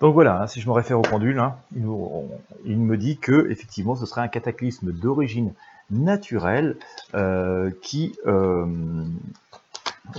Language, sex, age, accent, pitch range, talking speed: French, male, 40-59, French, 90-120 Hz, 135 wpm